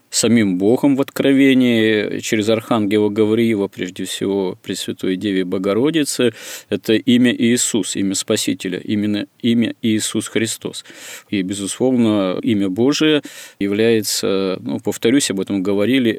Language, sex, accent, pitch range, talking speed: Russian, male, native, 100-120 Hz, 115 wpm